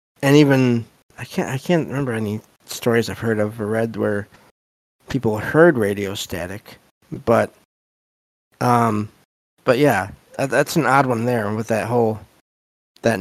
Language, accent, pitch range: English, American, 105-130 Hz